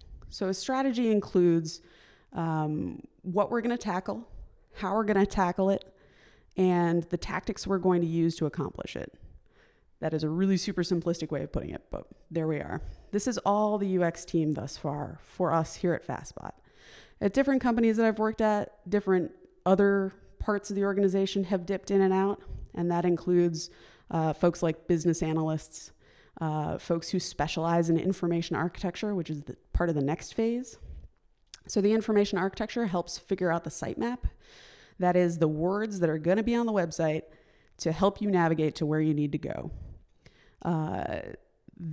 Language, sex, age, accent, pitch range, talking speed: English, female, 20-39, American, 170-210 Hz, 175 wpm